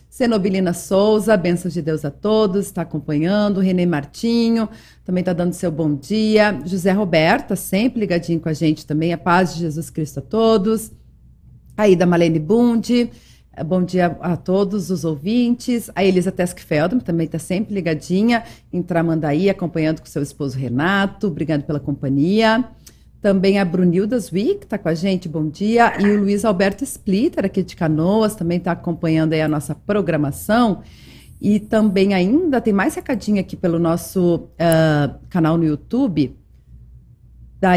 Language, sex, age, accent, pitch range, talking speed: Portuguese, female, 40-59, Brazilian, 165-210 Hz, 150 wpm